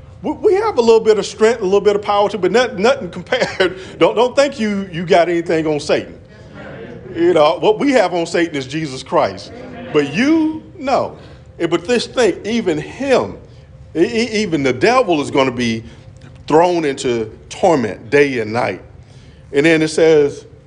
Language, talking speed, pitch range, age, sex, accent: English, 175 wpm, 125-190 Hz, 40-59, male, American